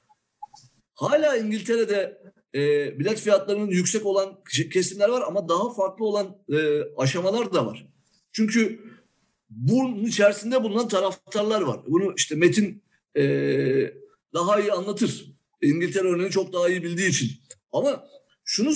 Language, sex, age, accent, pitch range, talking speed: Turkish, male, 50-69, native, 175-225 Hz, 125 wpm